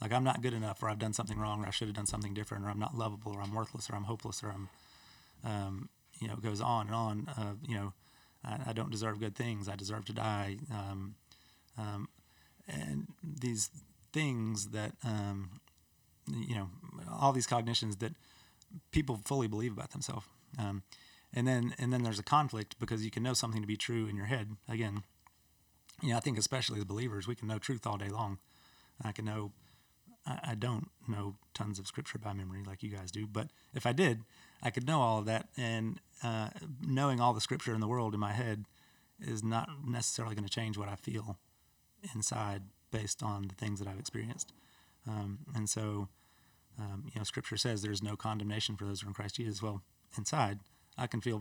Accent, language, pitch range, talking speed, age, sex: American, English, 100-120 Hz, 210 wpm, 30-49, male